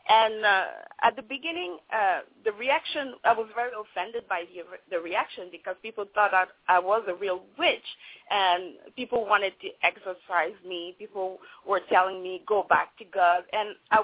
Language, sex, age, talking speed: English, female, 30-49, 175 wpm